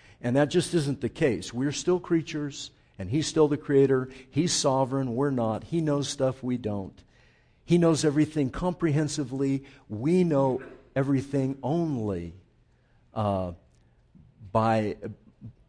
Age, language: 50-69, English